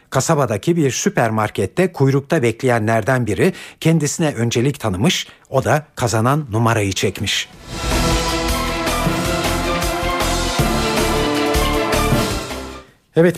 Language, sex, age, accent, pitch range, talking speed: Turkish, male, 60-79, native, 115-160 Hz, 65 wpm